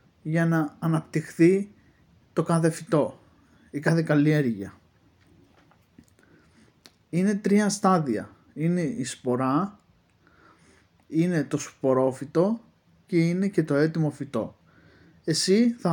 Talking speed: 100 wpm